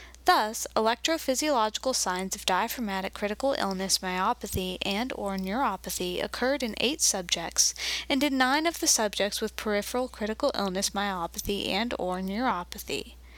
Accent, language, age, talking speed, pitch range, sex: American, English, 20-39, 130 wpm, 195-265 Hz, female